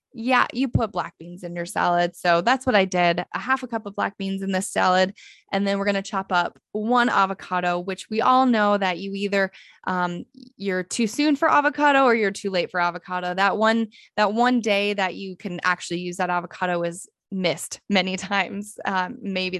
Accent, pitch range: American, 180-230 Hz